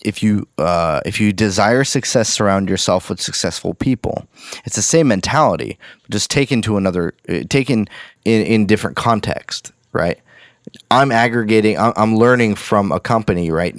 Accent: American